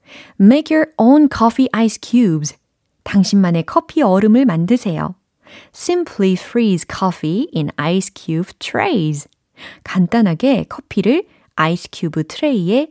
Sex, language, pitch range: female, Korean, 165-255 Hz